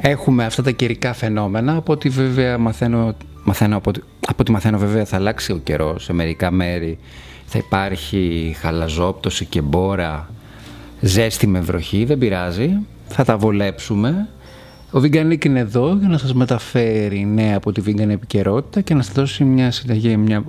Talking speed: 165 wpm